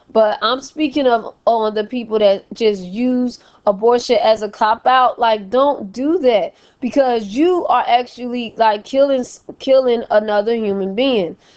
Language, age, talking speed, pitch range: English, 20-39, 145 wpm, 205-250 Hz